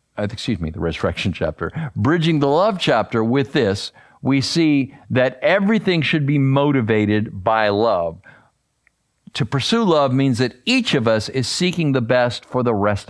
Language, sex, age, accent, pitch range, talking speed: English, male, 50-69, American, 115-150 Hz, 165 wpm